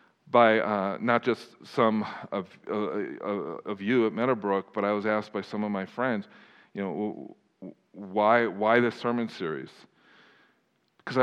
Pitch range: 100-120 Hz